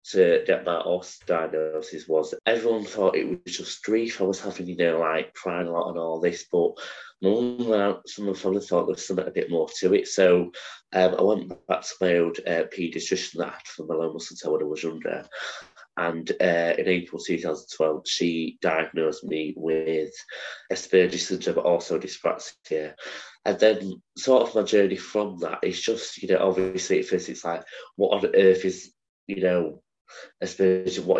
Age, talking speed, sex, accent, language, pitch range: 20-39, 190 wpm, male, British, English, 90-130 Hz